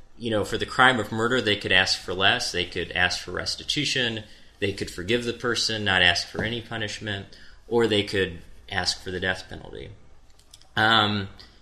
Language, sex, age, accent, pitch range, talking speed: English, male, 30-49, American, 95-115 Hz, 185 wpm